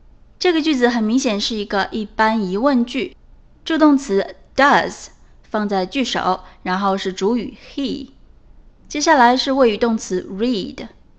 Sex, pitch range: female, 200-270 Hz